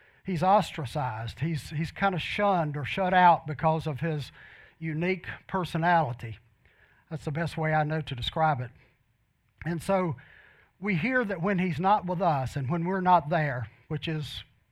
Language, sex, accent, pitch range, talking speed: English, male, American, 140-175 Hz, 165 wpm